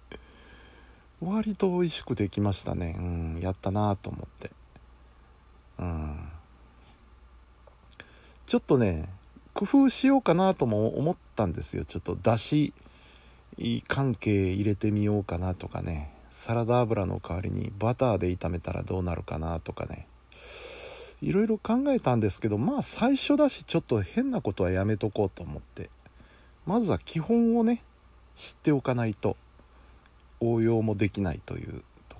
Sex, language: male, Japanese